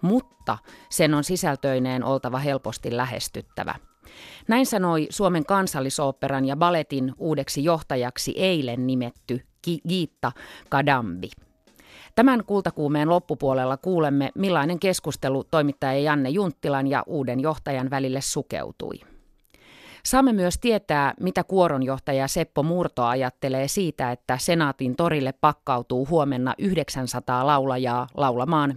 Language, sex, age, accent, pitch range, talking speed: Finnish, female, 30-49, native, 130-170 Hz, 105 wpm